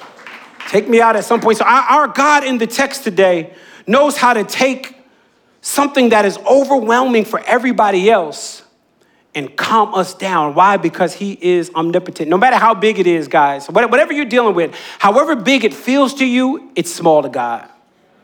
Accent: American